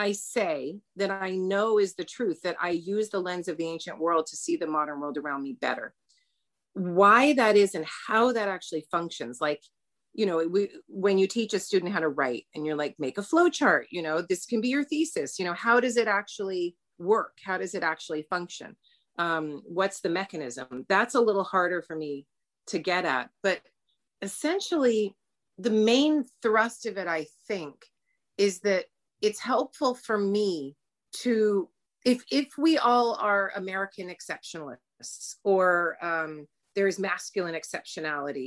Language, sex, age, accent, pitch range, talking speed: English, female, 30-49, American, 160-215 Hz, 175 wpm